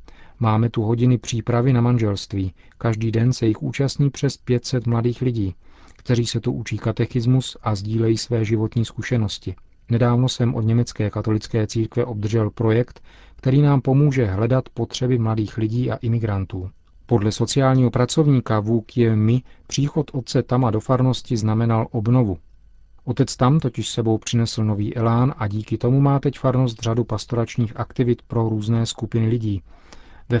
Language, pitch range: Czech, 110-135 Hz